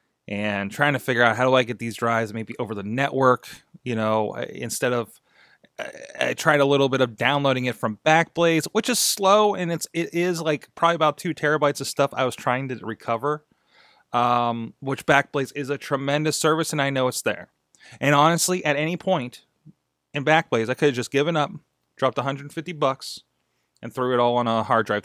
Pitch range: 115-150 Hz